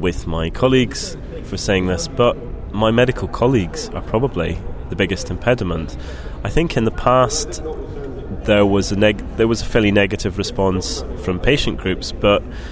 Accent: British